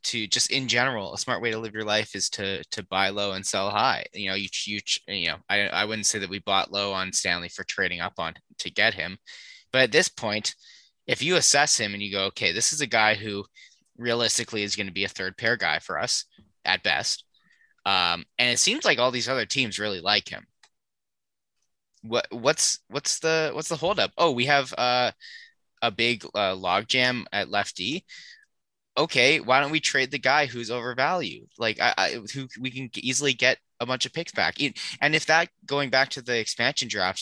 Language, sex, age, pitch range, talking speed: English, male, 20-39, 105-135 Hz, 215 wpm